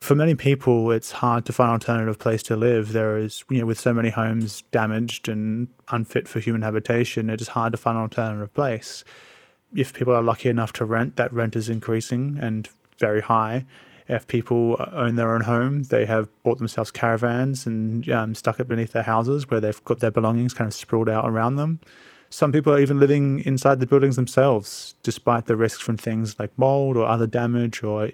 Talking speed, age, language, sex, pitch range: 205 wpm, 20-39, English, male, 115-125 Hz